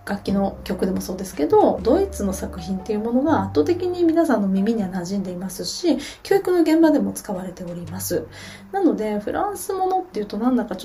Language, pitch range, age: Japanese, 195-290 Hz, 20-39